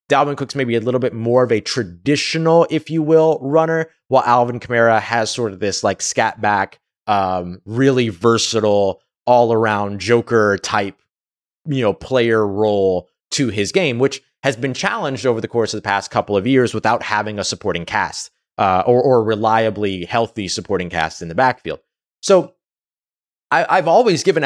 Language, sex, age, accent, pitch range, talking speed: English, male, 20-39, American, 105-130 Hz, 170 wpm